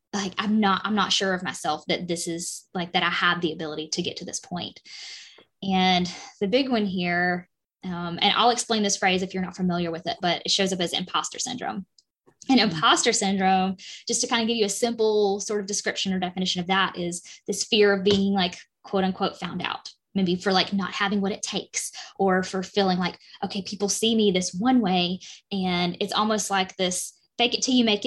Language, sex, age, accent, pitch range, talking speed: English, female, 10-29, American, 180-205 Hz, 220 wpm